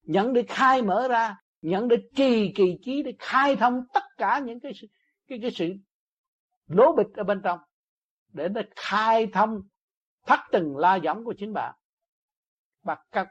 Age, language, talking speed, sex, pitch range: 60-79, Vietnamese, 165 wpm, male, 160-245 Hz